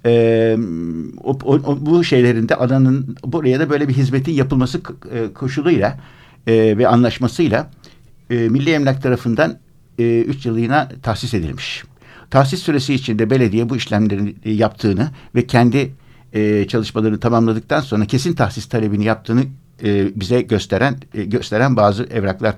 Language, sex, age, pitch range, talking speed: Turkish, male, 60-79, 110-140 Hz, 140 wpm